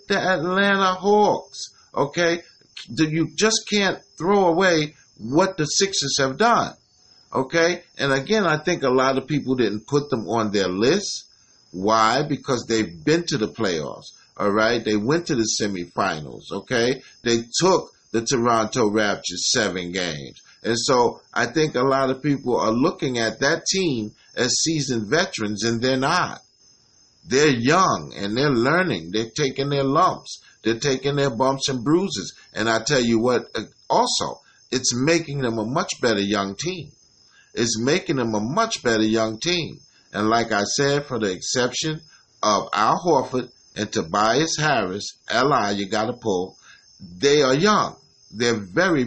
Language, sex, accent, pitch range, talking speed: English, male, American, 115-160 Hz, 160 wpm